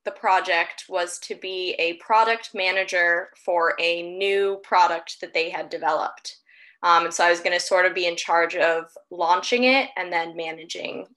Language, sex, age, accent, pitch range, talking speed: English, female, 10-29, American, 180-230 Hz, 185 wpm